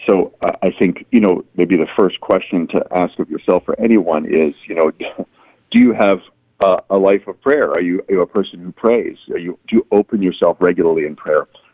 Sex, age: male, 50-69